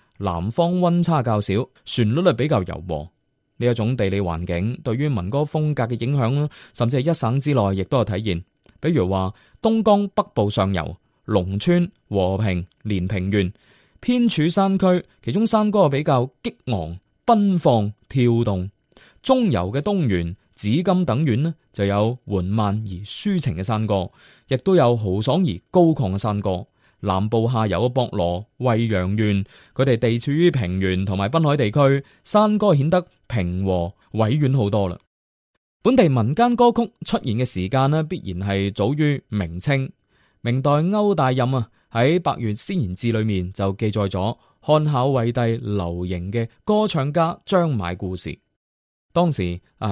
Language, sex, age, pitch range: Chinese, male, 20-39, 100-155 Hz